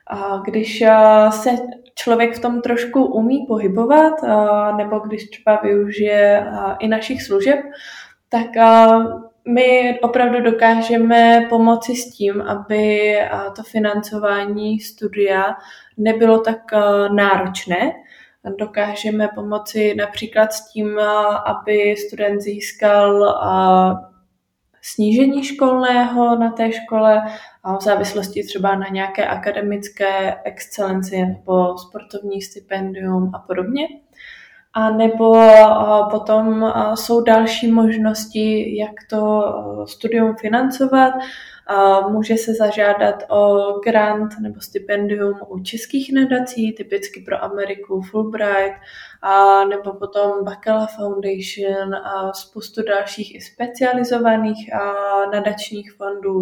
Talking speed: 95 wpm